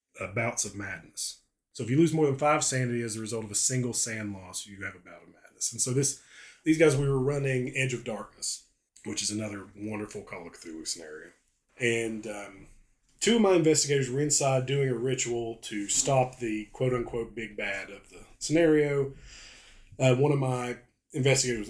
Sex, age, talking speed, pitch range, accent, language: male, 30-49, 195 wpm, 105-135 Hz, American, English